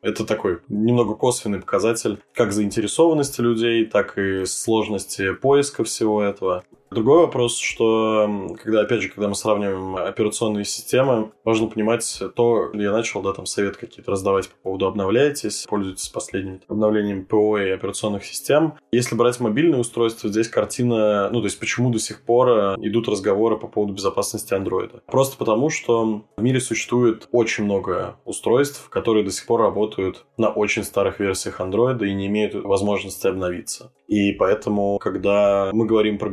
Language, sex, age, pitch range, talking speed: Russian, male, 20-39, 95-115 Hz, 155 wpm